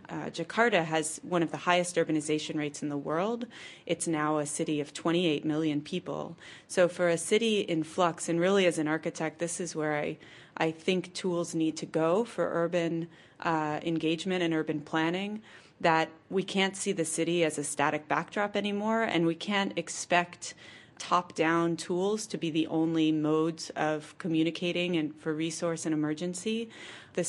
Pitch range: 160-180 Hz